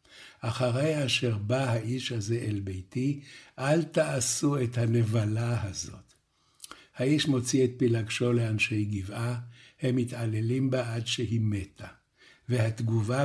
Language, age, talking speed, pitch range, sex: Hebrew, 60-79, 115 wpm, 120-145 Hz, male